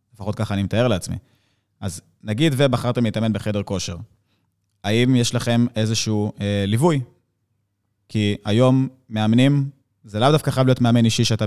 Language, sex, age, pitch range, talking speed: Hebrew, male, 20-39, 105-120 Hz, 145 wpm